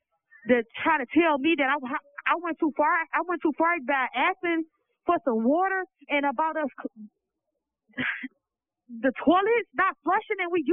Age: 20-39